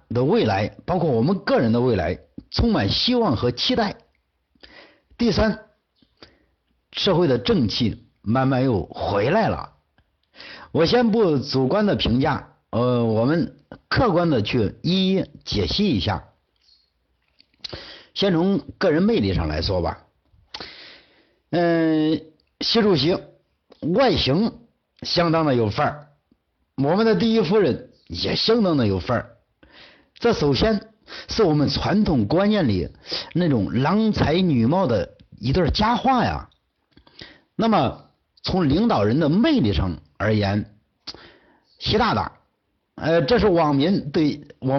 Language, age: Chinese, 60-79